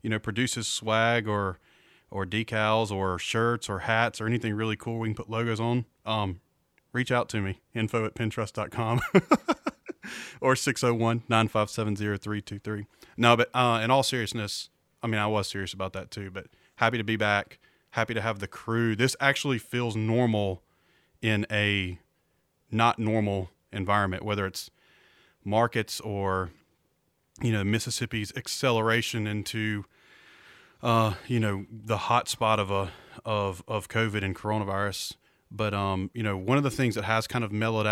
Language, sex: English, male